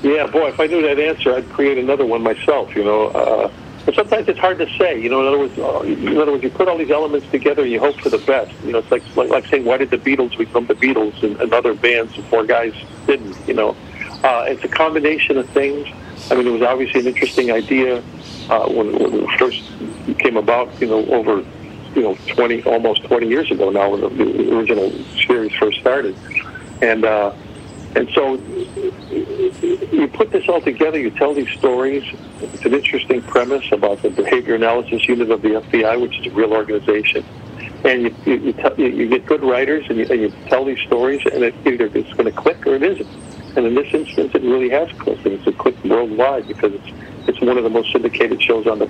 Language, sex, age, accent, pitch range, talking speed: English, male, 60-79, American, 115-185 Hz, 225 wpm